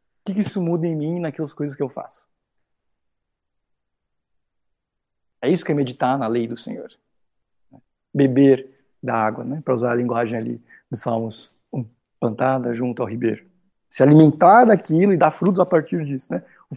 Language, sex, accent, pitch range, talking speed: Portuguese, male, Brazilian, 140-190 Hz, 170 wpm